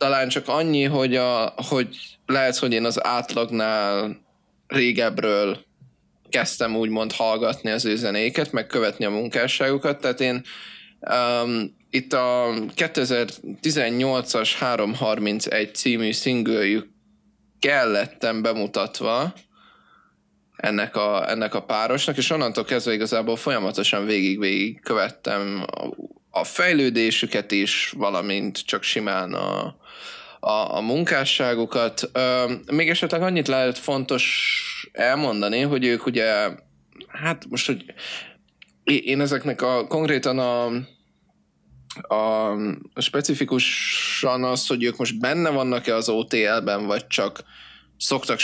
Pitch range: 110-140 Hz